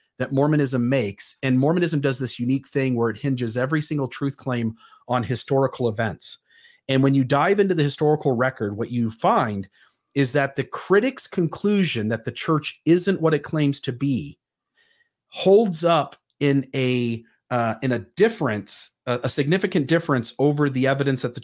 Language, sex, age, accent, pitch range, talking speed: English, male, 40-59, American, 120-150 Hz, 170 wpm